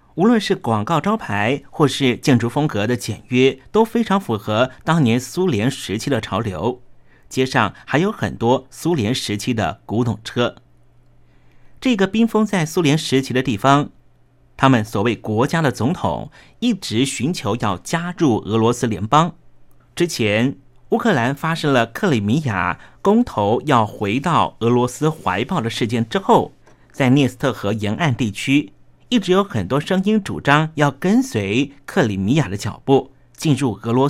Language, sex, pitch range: Chinese, male, 115-160 Hz